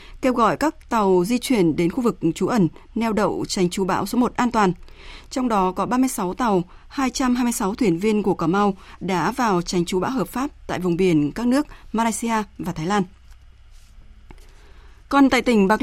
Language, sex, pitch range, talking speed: Vietnamese, female, 185-245 Hz, 195 wpm